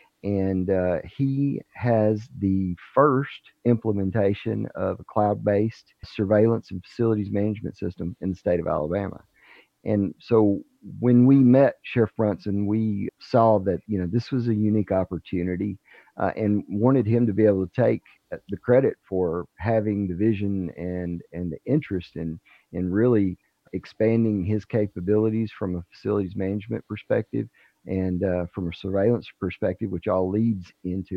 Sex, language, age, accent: male, English, 40-59, American